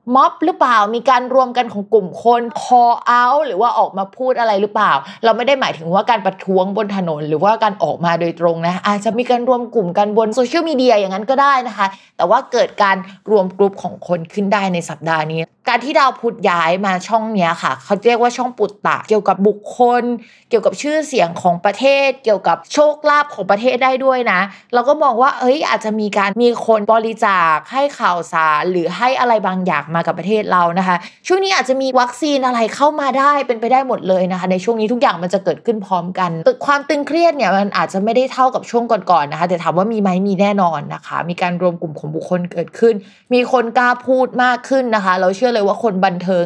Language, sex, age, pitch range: Thai, female, 20-39, 185-245 Hz